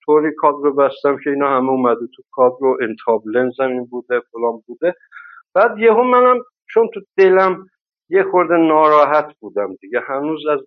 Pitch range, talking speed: 130-170 Hz, 155 wpm